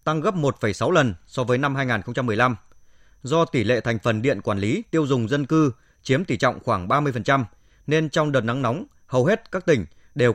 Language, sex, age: Vietnamese, male, 20-39